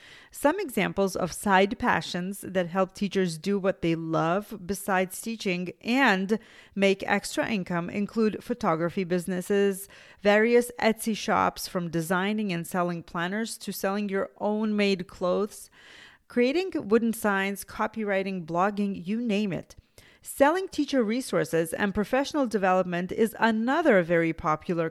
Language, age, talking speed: English, 30-49, 130 wpm